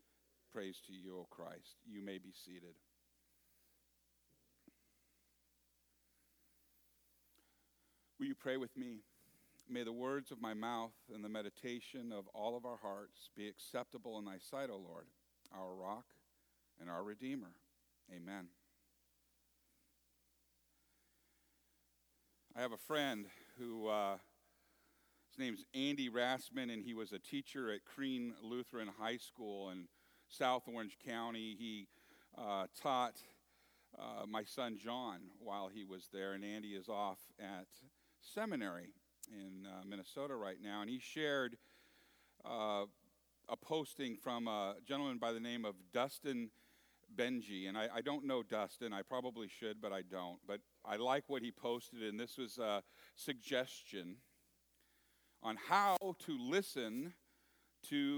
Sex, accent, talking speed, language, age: male, American, 135 wpm, English, 50-69